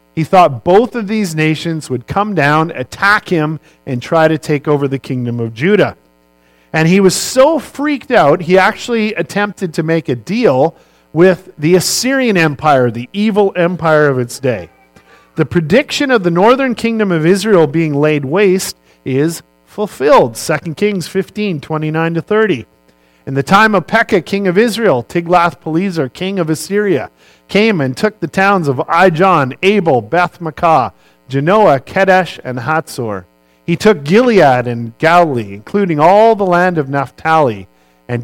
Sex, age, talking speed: male, 50-69, 150 wpm